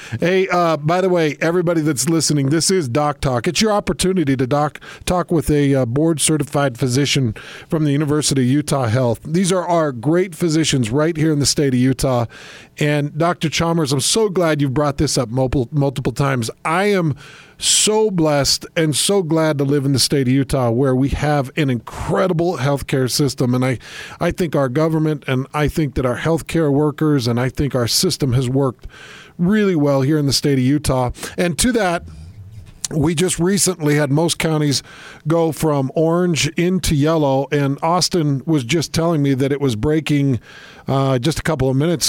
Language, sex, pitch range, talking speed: English, male, 135-170 Hz, 195 wpm